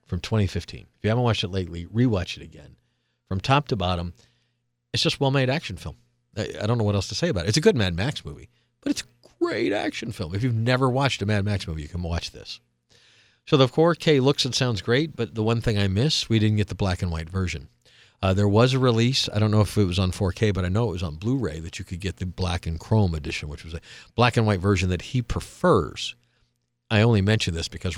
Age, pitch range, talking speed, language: 50-69, 90-115 Hz, 255 wpm, English